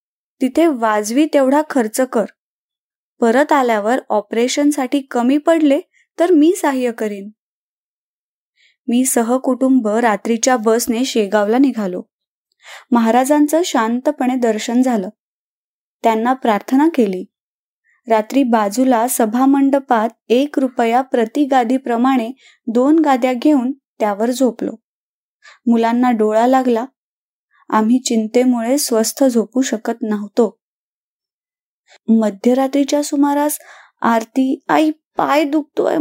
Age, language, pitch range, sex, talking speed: 20-39, Marathi, 230-290 Hz, female, 90 wpm